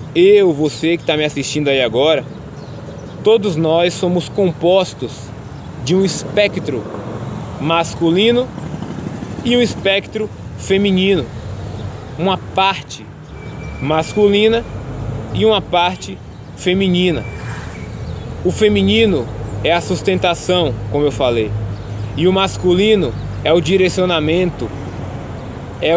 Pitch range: 125-180 Hz